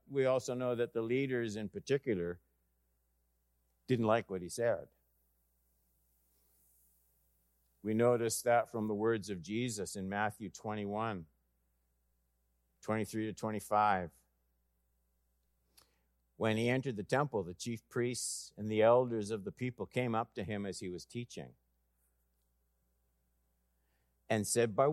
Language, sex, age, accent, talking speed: English, male, 50-69, American, 125 wpm